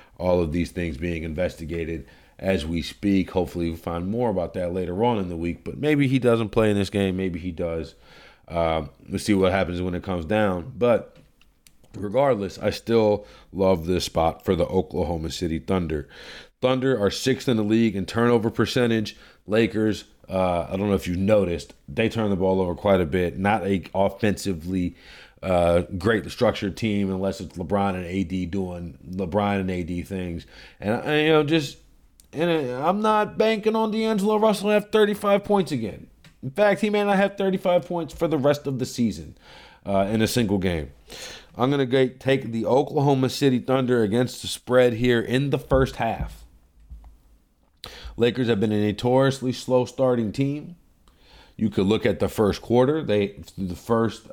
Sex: male